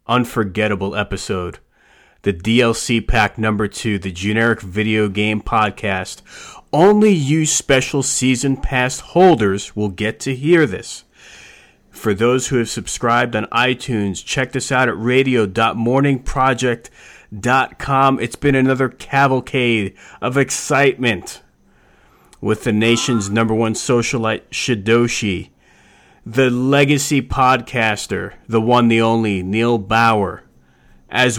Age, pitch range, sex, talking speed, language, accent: 30-49, 105-135 Hz, male, 110 wpm, English, American